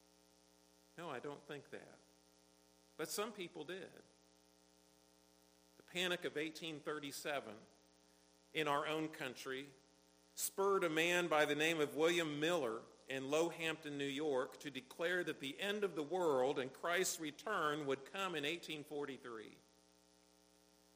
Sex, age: male, 50-69